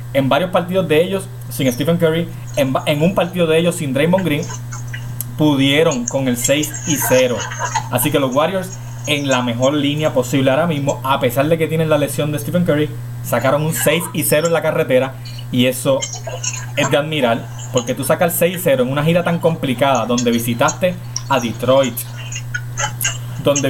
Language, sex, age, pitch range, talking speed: Spanish, male, 30-49, 120-160 Hz, 190 wpm